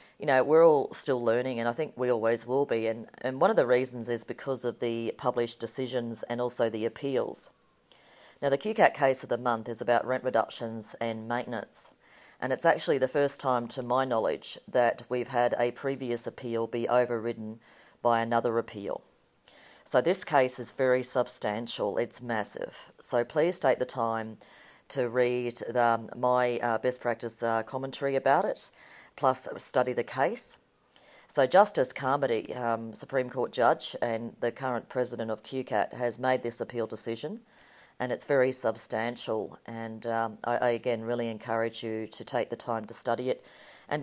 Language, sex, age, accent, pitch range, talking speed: English, female, 40-59, Australian, 115-130 Hz, 175 wpm